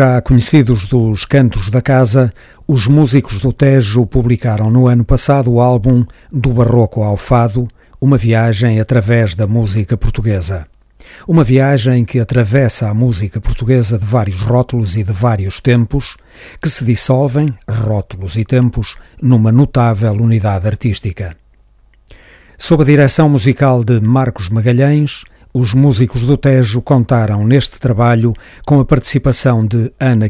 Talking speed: 135 wpm